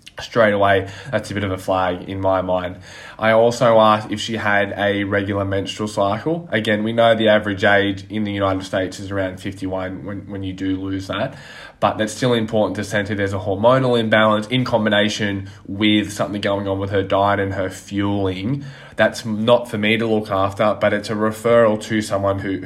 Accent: Australian